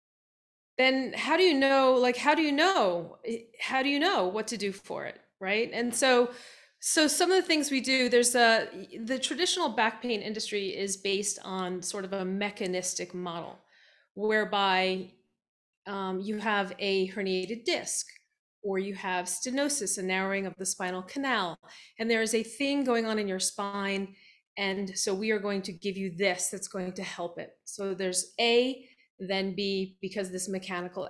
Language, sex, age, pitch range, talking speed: English, female, 30-49, 195-255 Hz, 180 wpm